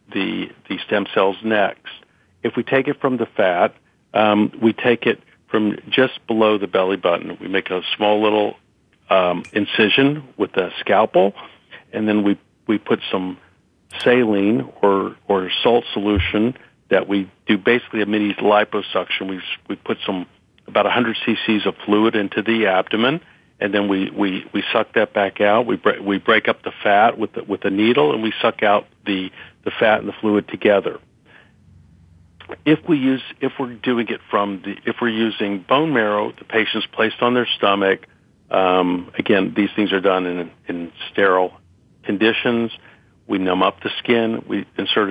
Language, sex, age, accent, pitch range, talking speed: English, male, 50-69, American, 95-115 Hz, 175 wpm